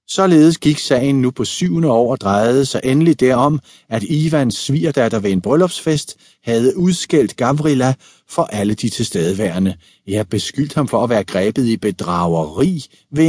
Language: Danish